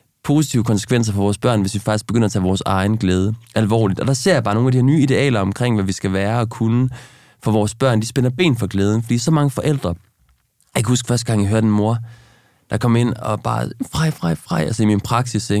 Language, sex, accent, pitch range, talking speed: Danish, male, native, 110-135 Hz, 250 wpm